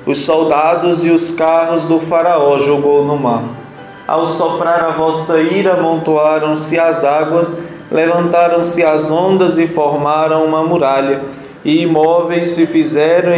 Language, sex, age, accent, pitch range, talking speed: Portuguese, male, 20-39, Brazilian, 150-175 Hz, 130 wpm